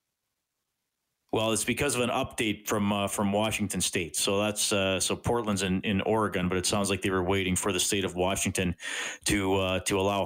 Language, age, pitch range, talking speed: English, 40-59, 110-170 Hz, 205 wpm